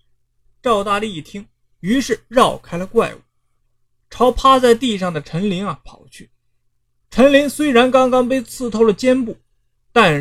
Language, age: Chinese, 20-39